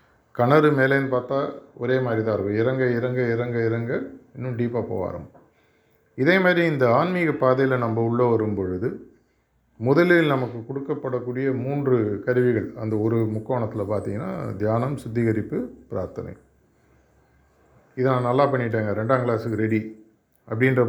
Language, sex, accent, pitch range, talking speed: Tamil, male, native, 110-135 Hz, 125 wpm